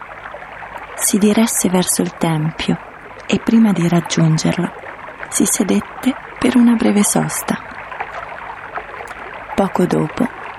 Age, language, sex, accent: 30-49, Italian, female, native